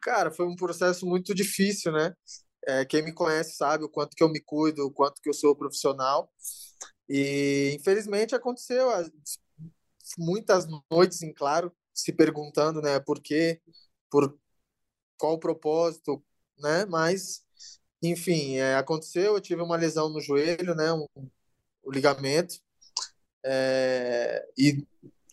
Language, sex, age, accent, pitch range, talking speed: Portuguese, male, 20-39, Brazilian, 140-170 Hz, 135 wpm